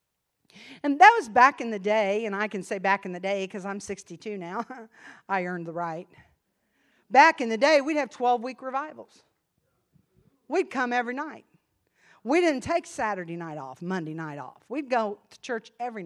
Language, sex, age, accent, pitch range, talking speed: English, female, 50-69, American, 195-270 Hz, 185 wpm